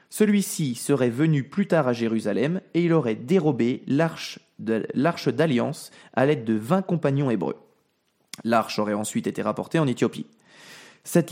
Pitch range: 135-190 Hz